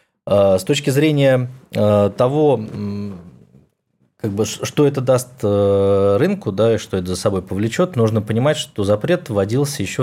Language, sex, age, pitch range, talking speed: Russian, male, 20-39, 100-130 Hz, 140 wpm